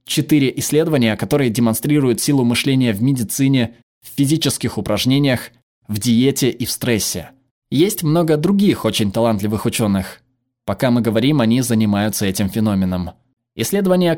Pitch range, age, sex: 115-145 Hz, 20-39, male